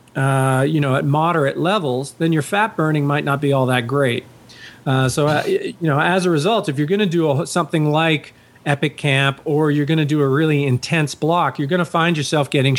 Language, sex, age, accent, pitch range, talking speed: English, male, 40-59, American, 130-170 Hz, 225 wpm